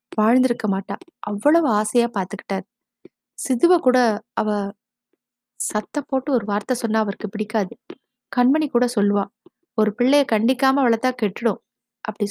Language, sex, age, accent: Tamil, female, 20-39, native